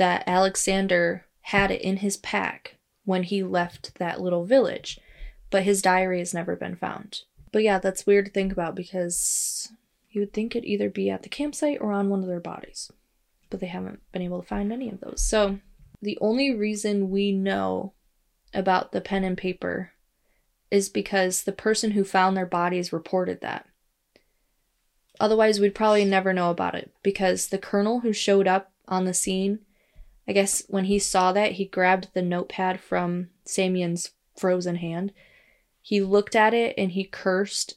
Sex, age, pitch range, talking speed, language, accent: female, 20-39, 180-205 Hz, 175 wpm, English, American